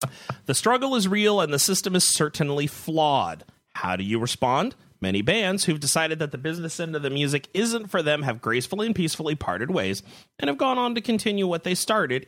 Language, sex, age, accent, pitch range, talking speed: English, male, 30-49, American, 130-200 Hz, 210 wpm